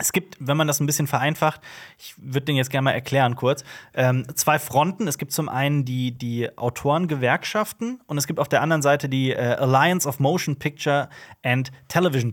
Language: German